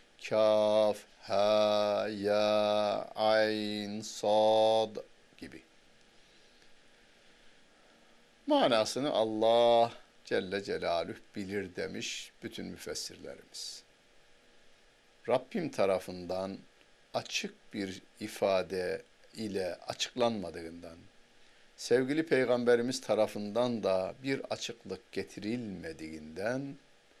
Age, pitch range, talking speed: 60-79, 100-120 Hz, 55 wpm